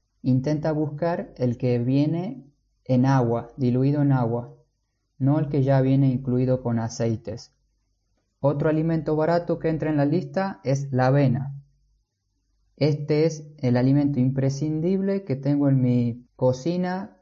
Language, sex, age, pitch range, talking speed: Spanish, male, 20-39, 125-150 Hz, 135 wpm